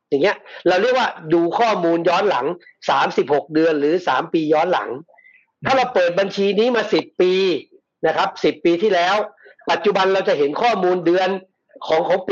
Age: 60-79